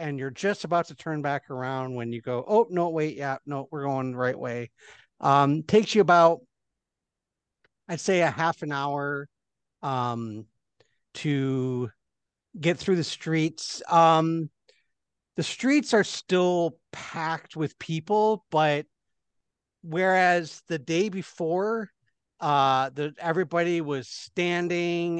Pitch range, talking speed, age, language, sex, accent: 140-175 Hz, 130 wpm, 50-69, English, male, American